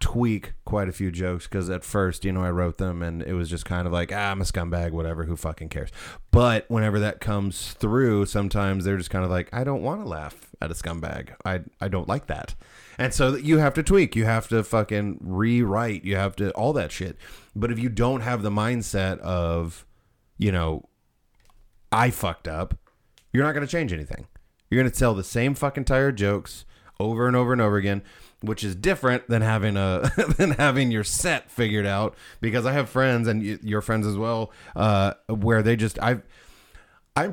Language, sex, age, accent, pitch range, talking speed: English, male, 30-49, American, 90-120 Hz, 210 wpm